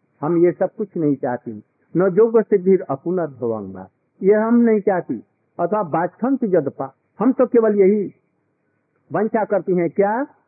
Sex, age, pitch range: male, 50-69, 155-215 Hz